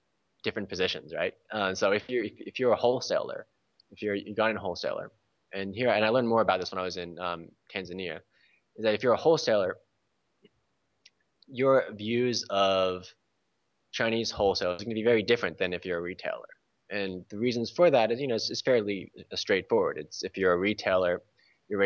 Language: English